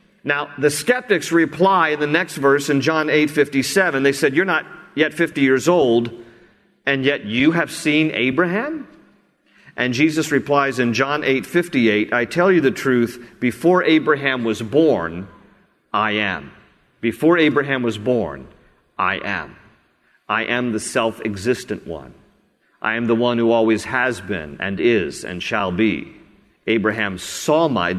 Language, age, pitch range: English, 50-69, 115-150 Hz